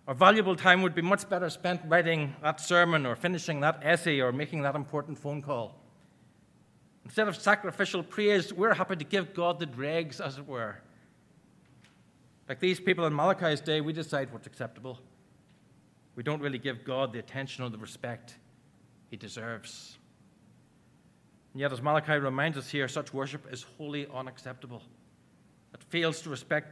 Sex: male